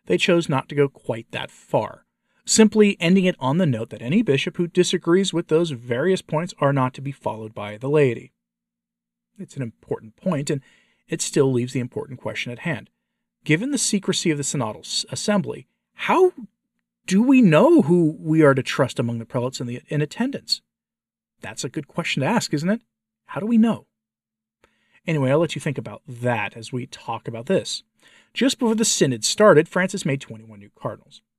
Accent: American